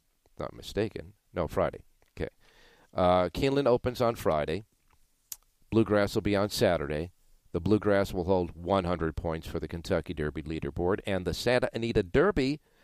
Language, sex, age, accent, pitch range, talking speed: English, male, 50-69, American, 85-115 Hz, 145 wpm